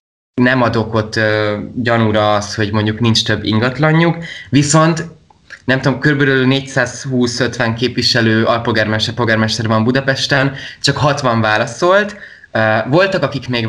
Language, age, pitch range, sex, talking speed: Hungarian, 20-39, 110-140 Hz, male, 120 wpm